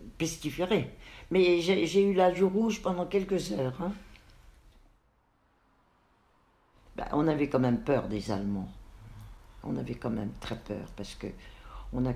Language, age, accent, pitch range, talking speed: French, 60-79, French, 110-160 Hz, 145 wpm